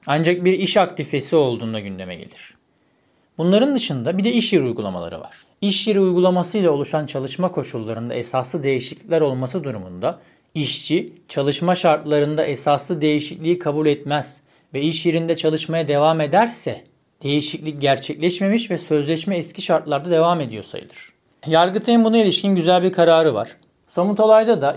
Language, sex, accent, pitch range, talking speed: Turkish, male, native, 145-185 Hz, 140 wpm